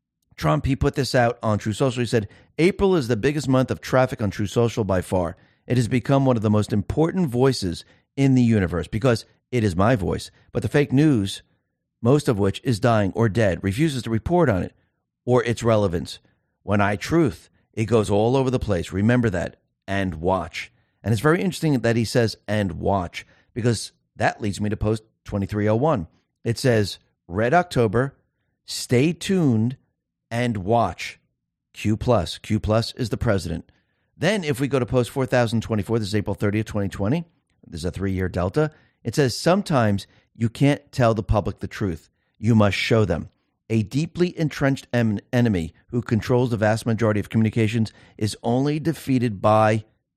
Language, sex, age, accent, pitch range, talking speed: English, male, 40-59, American, 100-130 Hz, 175 wpm